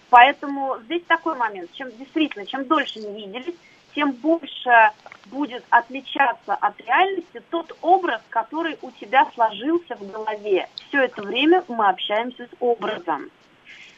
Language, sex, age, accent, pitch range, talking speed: Russian, female, 30-49, native, 215-320 Hz, 135 wpm